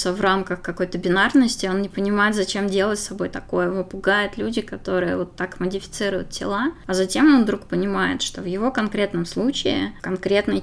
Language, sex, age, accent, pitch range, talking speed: Russian, female, 20-39, native, 180-210 Hz, 175 wpm